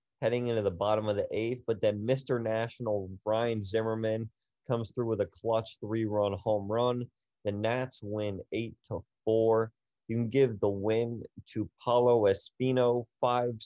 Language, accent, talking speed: English, American, 160 wpm